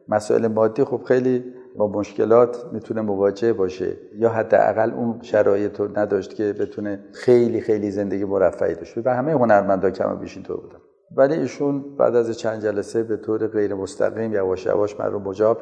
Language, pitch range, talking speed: Persian, 105-125 Hz, 170 wpm